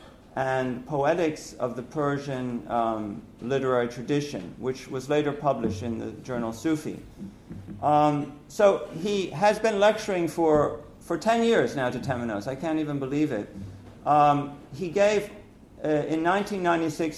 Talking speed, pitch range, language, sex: 135 wpm, 135-160 Hz, English, male